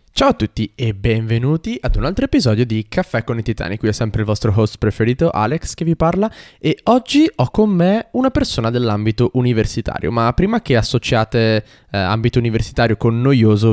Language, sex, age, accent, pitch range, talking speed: Italian, male, 20-39, native, 105-130 Hz, 190 wpm